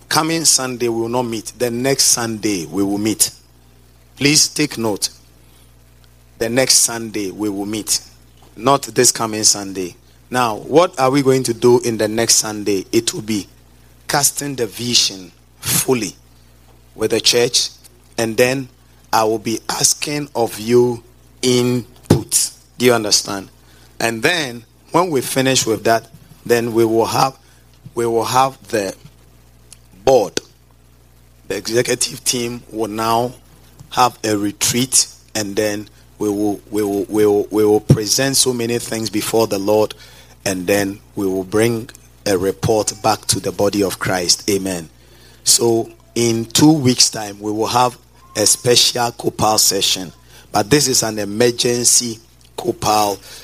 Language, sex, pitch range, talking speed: English, male, 95-125 Hz, 145 wpm